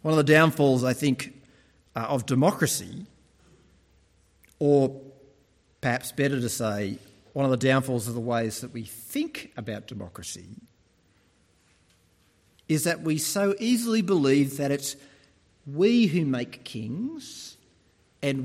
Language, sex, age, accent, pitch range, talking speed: English, male, 40-59, Australian, 110-175 Hz, 125 wpm